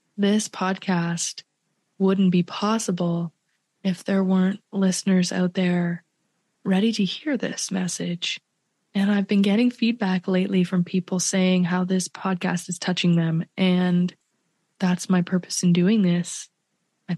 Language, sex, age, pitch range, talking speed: English, female, 20-39, 175-190 Hz, 135 wpm